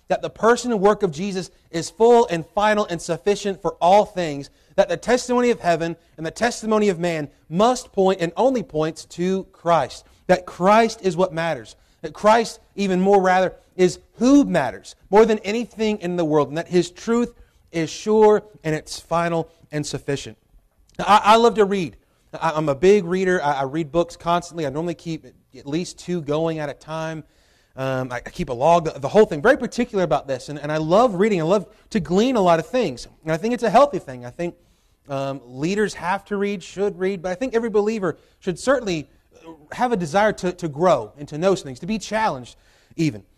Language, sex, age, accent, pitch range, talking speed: English, male, 30-49, American, 155-210 Hz, 210 wpm